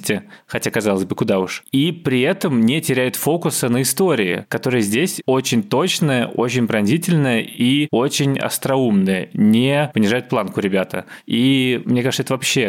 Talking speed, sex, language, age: 145 wpm, male, Russian, 20-39